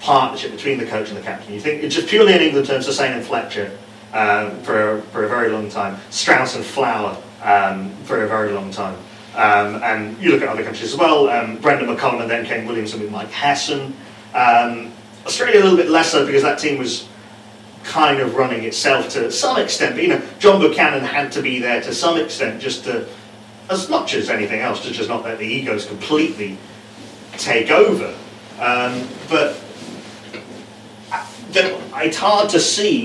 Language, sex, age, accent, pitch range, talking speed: English, male, 40-59, British, 110-155 Hz, 195 wpm